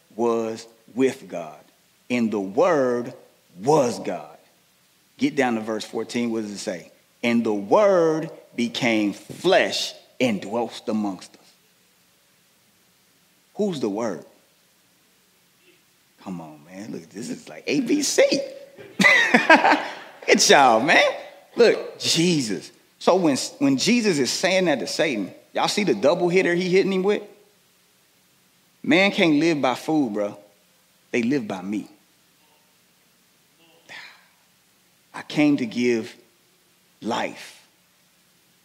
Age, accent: 30-49, American